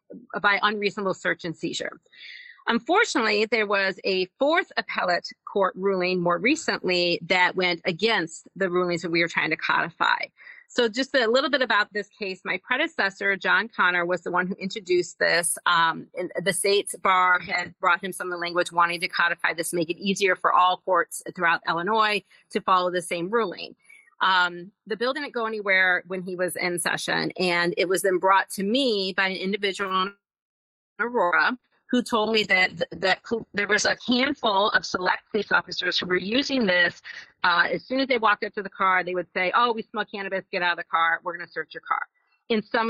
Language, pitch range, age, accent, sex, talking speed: English, 180-225 Hz, 40-59, American, female, 205 wpm